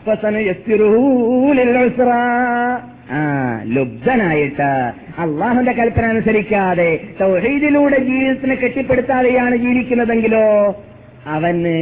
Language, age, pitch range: Malayalam, 30-49, 160-240 Hz